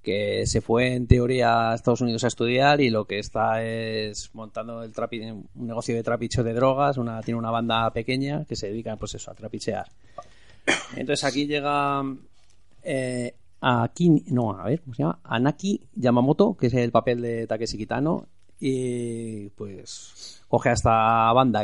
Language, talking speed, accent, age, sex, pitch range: Spanish, 175 wpm, Spanish, 30-49, male, 110-130 Hz